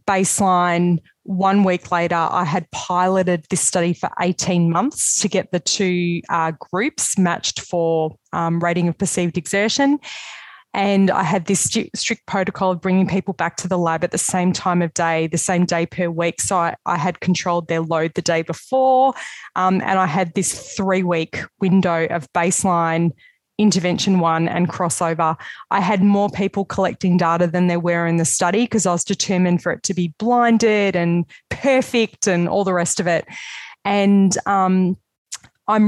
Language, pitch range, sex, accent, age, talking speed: English, 175-200 Hz, female, Australian, 20-39, 175 wpm